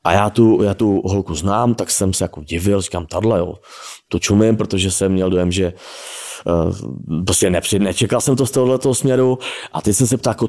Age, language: 30-49, Czech